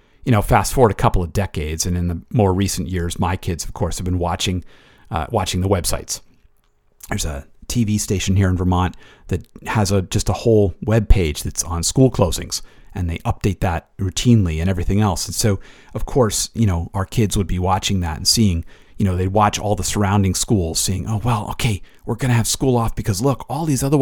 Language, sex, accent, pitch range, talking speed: English, male, American, 90-115 Hz, 220 wpm